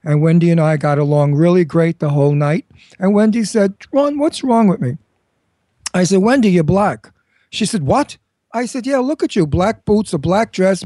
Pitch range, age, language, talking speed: 155-205 Hz, 60-79, English, 210 wpm